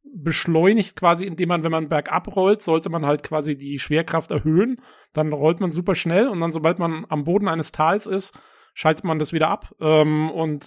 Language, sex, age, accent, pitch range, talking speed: German, male, 40-59, German, 155-190 Hz, 200 wpm